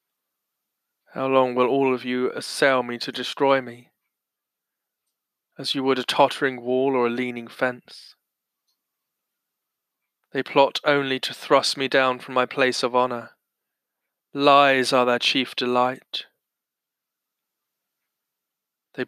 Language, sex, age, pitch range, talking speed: English, male, 20-39, 125-135 Hz, 125 wpm